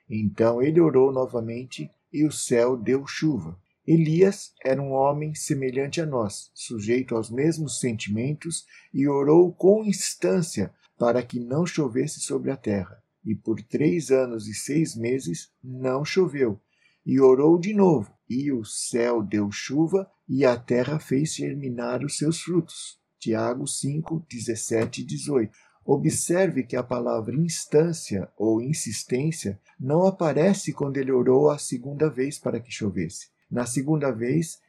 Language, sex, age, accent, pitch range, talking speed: Portuguese, male, 50-69, Brazilian, 120-155 Hz, 145 wpm